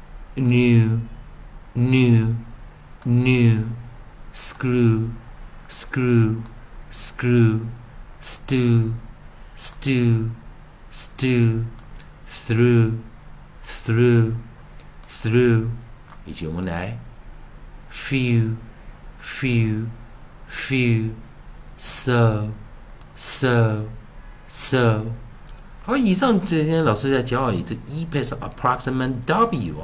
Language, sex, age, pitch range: Chinese, male, 60-79, 110-130 Hz